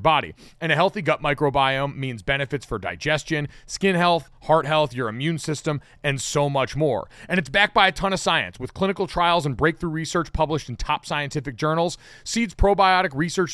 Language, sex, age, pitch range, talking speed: English, male, 30-49, 135-185 Hz, 190 wpm